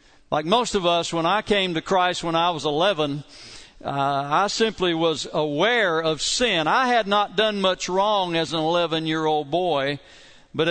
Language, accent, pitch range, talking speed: English, American, 145-195 Hz, 175 wpm